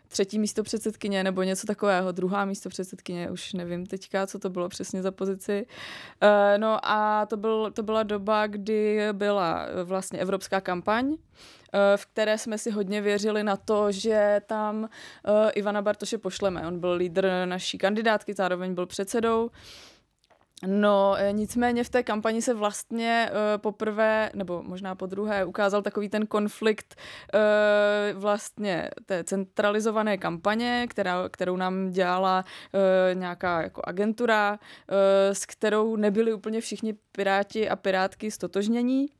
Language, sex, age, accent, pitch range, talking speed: Czech, female, 20-39, native, 190-215 Hz, 140 wpm